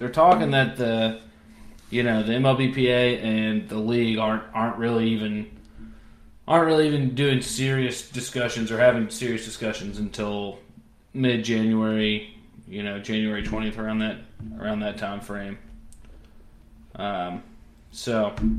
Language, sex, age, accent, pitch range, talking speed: English, male, 20-39, American, 110-125 Hz, 130 wpm